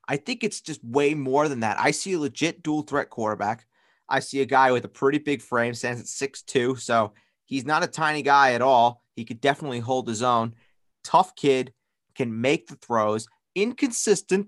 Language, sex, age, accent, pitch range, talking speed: English, male, 30-49, American, 125-165 Hz, 200 wpm